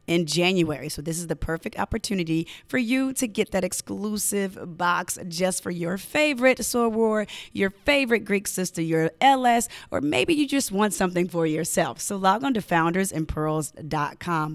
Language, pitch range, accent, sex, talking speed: English, 170-235 Hz, American, female, 160 wpm